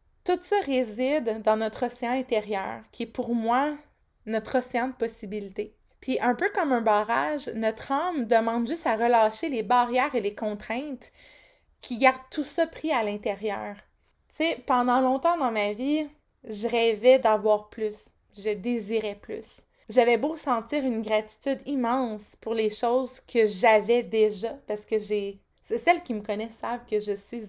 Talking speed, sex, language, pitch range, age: 165 wpm, female, French, 225-280 Hz, 20-39